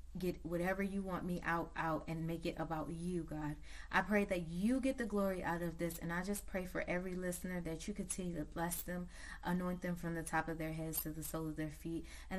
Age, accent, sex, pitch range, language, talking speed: 20-39, American, female, 160-190 Hz, English, 245 wpm